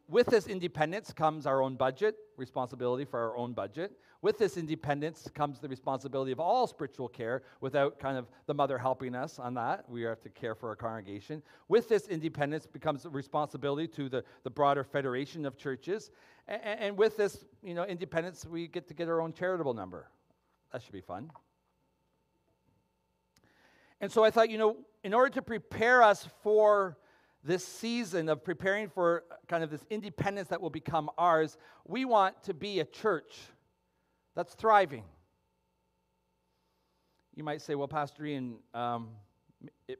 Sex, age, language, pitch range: male, 40-59, English, 125-175 Hz